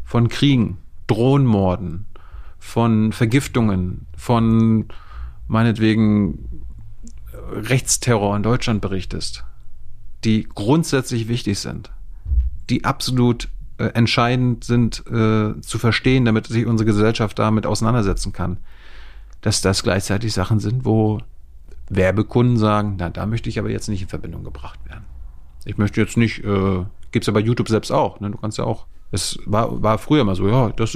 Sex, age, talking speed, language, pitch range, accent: male, 40-59, 145 wpm, German, 95-115 Hz, German